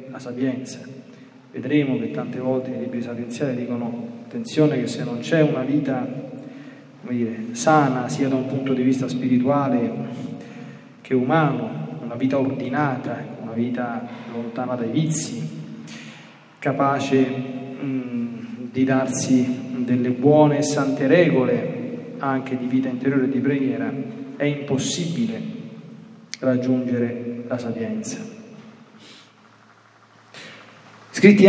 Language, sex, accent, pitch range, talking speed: Italian, male, native, 125-155 Hz, 110 wpm